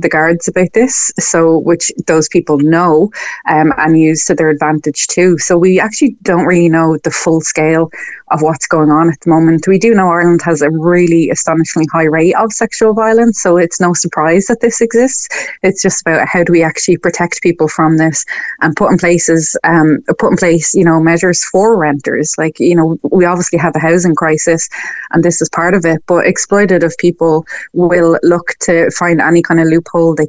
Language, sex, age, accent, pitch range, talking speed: English, female, 20-39, Irish, 160-180 Hz, 205 wpm